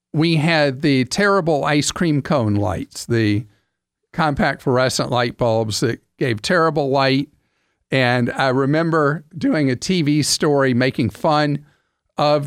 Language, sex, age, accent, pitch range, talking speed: English, male, 50-69, American, 125-155 Hz, 130 wpm